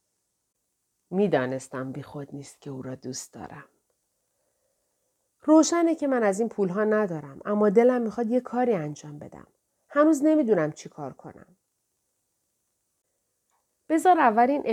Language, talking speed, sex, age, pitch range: Persian, 120 wpm, female, 40-59, 165-240 Hz